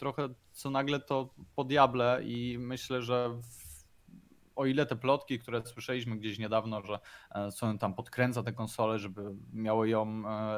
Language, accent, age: Polish, native, 20-39